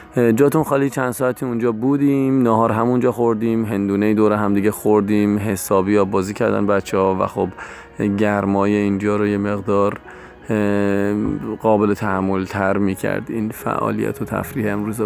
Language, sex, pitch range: Persian, male, 105-120 Hz